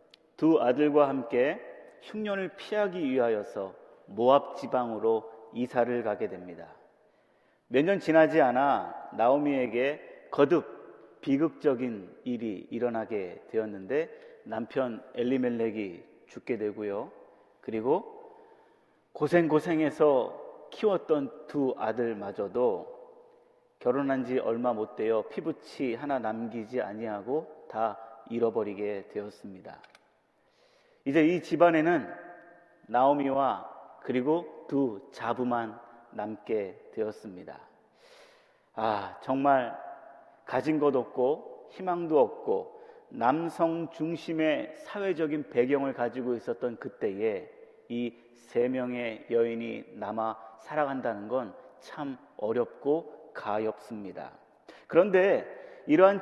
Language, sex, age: Korean, male, 40-59